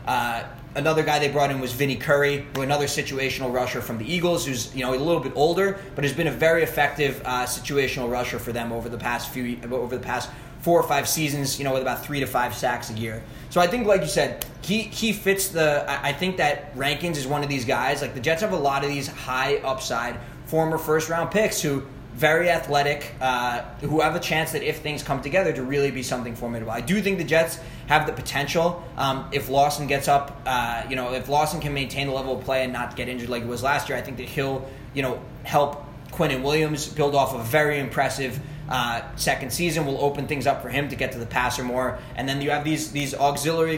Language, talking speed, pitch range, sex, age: English, 240 wpm, 130-150 Hz, male, 20-39